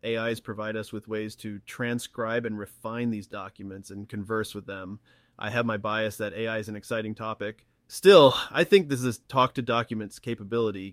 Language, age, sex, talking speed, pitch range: English, 30-49, male, 170 wpm, 105-120 Hz